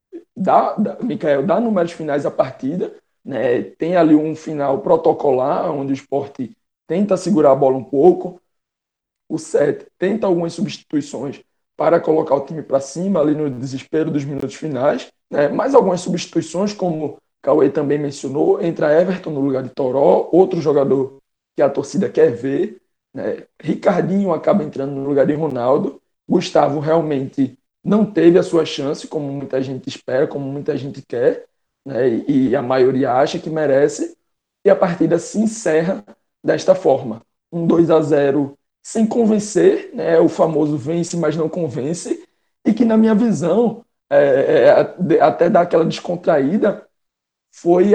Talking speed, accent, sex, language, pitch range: 155 wpm, Brazilian, male, Portuguese, 145-195 Hz